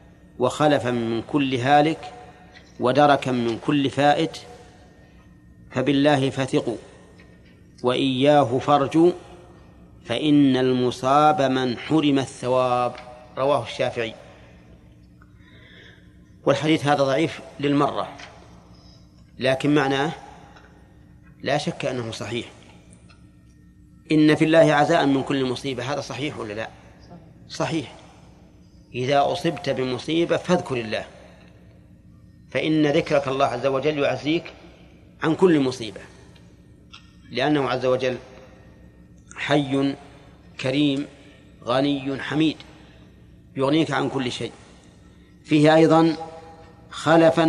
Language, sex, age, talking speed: Arabic, male, 40-59, 85 wpm